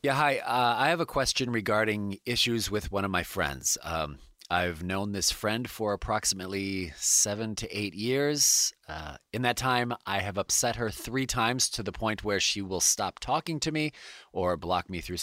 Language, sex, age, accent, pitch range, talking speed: English, male, 30-49, American, 95-125 Hz, 195 wpm